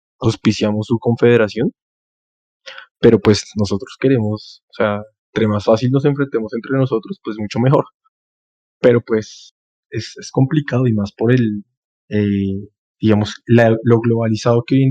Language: Spanish